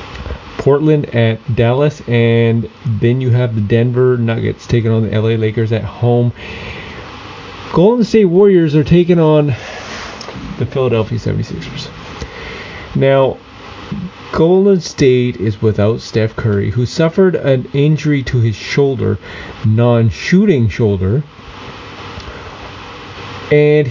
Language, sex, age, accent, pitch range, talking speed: English, male, 30-49, American, 110-150 Hz, 110 wpm